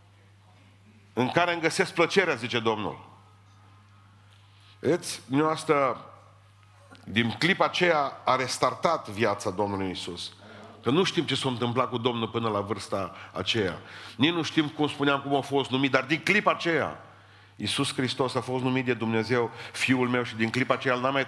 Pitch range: 100-125 Hz